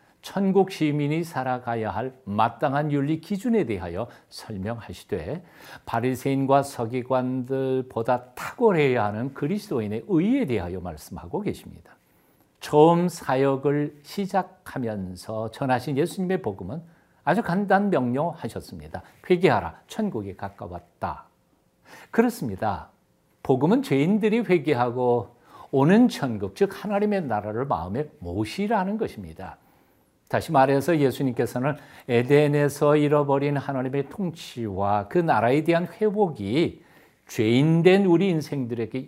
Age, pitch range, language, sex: 50-69, 115-175 Hz, Korean, male